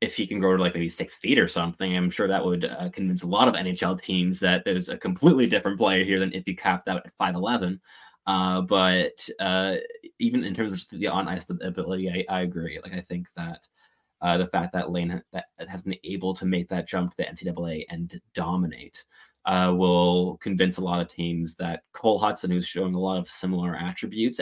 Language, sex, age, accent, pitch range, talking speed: English, male, 20-39, American, 90-95 Hz, 220 wpm